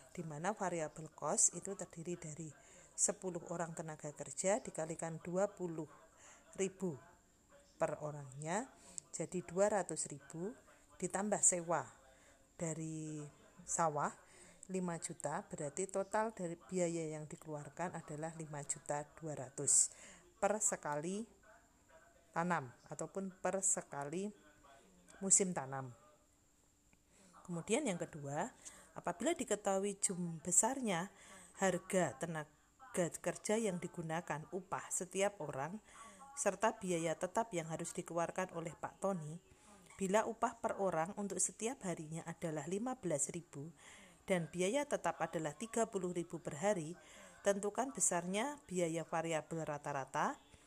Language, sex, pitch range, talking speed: Indonesian, female, 155-195 Hz, 100 wpm